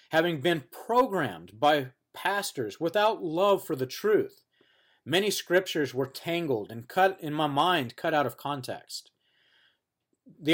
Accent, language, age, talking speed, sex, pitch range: American, English, 40-59, 135 wpm, male, 135-180 Hz